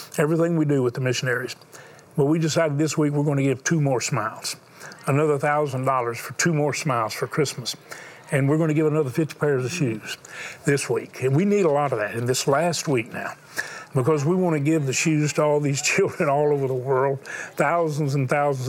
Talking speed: 210 wpm